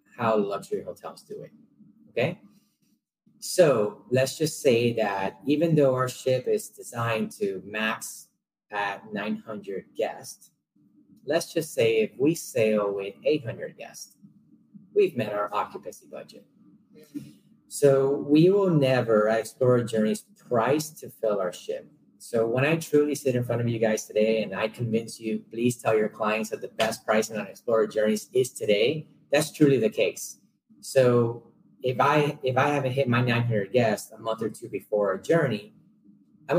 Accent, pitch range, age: American, 110-155 Hz, 30-49